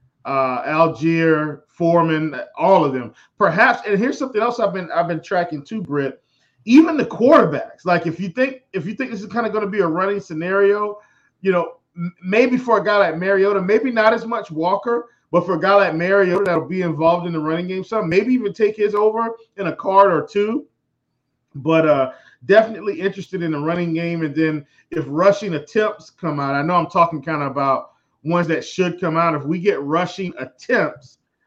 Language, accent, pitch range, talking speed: English, American, 145-195 Hz, 205 wpm